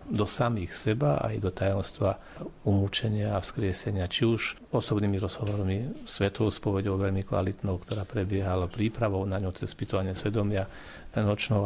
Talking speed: 130 wpm